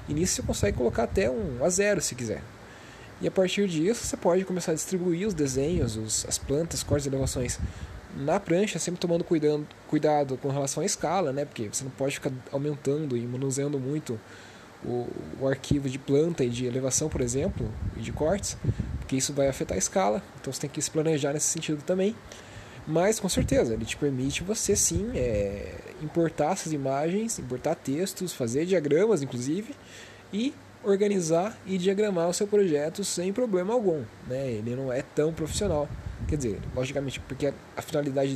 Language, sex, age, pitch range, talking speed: Portuguese, male, 20-39, 130-175 Hz, 180 wpm